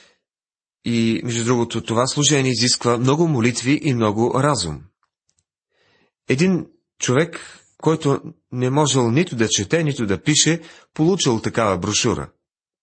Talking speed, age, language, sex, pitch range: 115 wpm, 30-49, Bulgarian, male, 110-145 Hz